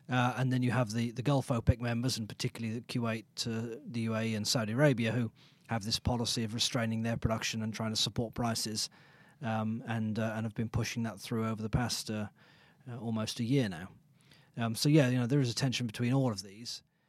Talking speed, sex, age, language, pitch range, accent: 225 wpm, male, 30-49, English, 115-140 Hz, British